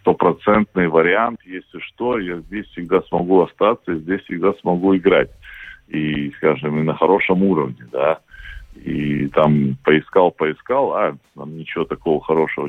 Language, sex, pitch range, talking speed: Russian, male, 75-90 Hz, 130 wpm